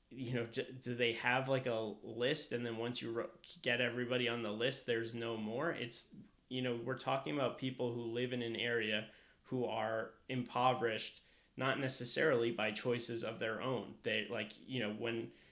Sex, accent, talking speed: male, American, 180 wpm